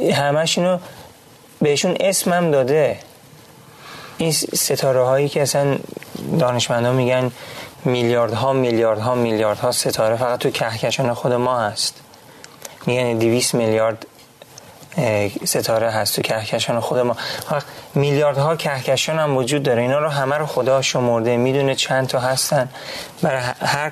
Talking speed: 125 wpm